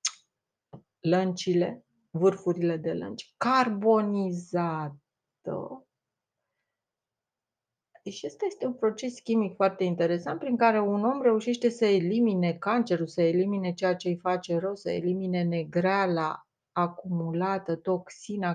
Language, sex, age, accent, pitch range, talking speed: Romanian, female, 30-49, native, 175-220 Hz, 105 wpm